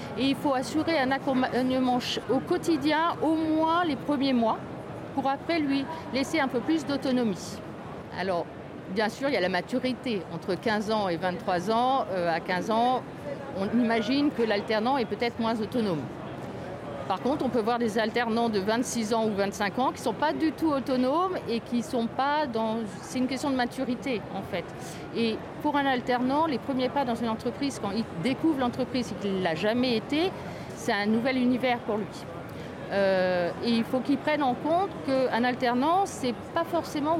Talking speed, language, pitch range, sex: 190 wpm, French, 220-280 Hz, female